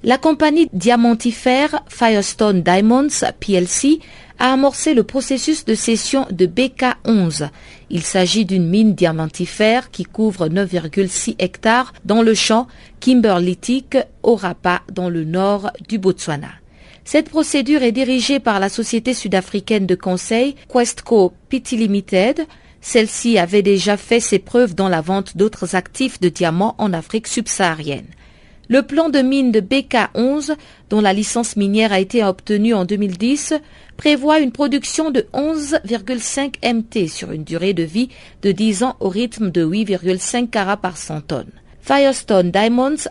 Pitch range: 195-255 Hz